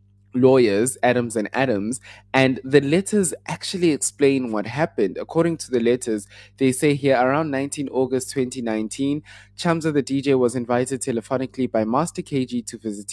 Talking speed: 150 wpm